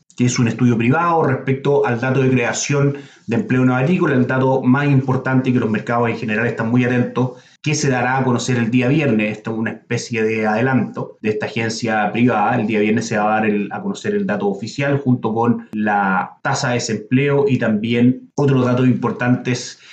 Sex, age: male, 30-49